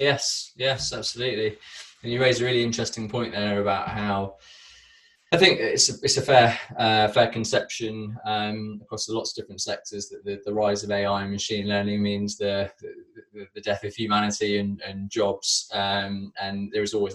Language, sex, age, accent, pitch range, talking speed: English, male, 20-39, British, 100-110 Hz, 185 wpm